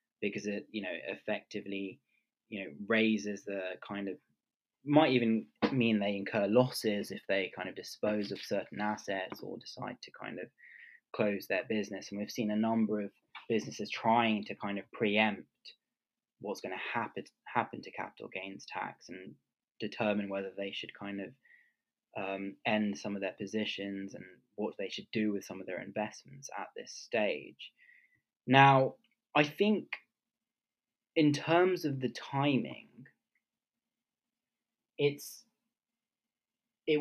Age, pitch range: 20-39, 105-155 Hz